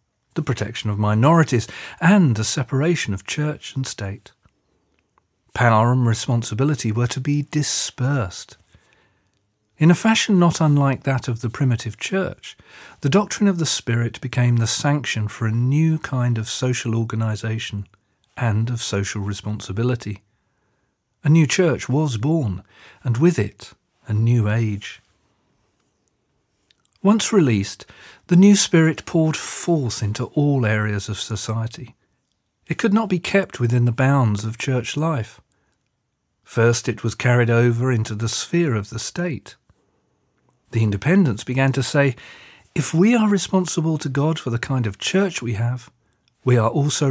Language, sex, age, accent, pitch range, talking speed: English, male, 40-59, British, 110-150 Hz, 145 wpm